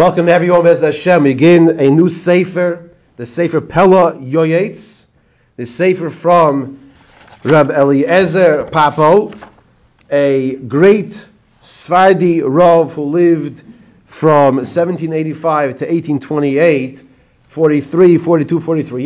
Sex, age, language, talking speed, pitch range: male, 40-59, English, 100 wpm, 135-170 Hz